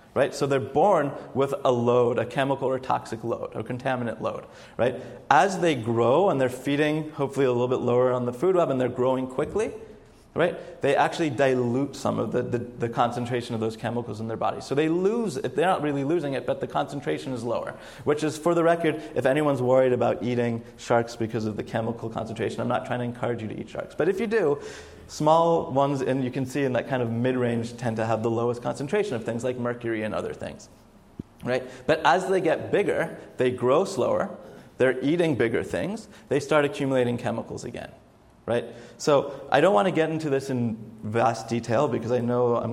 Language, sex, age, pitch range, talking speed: English, male, 30-49, 120-145 Hz, 210 wpm